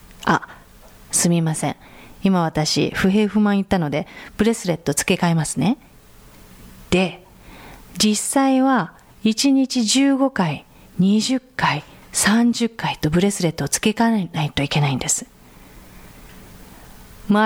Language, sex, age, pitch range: Japanese, female, 40-59, 155-230 Hz